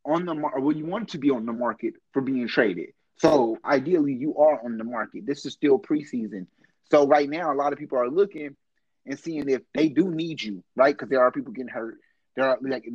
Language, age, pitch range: English, 30-49, 140-205 Hz